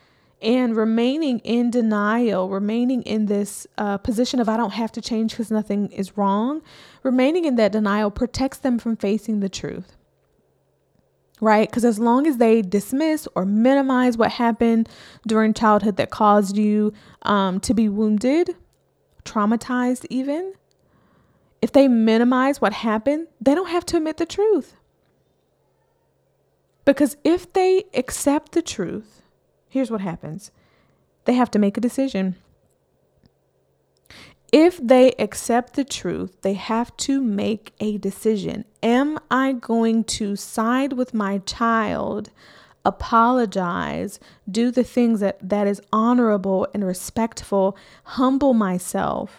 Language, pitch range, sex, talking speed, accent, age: English, 210-255 Hz, female, 130 wpm, American, 20-39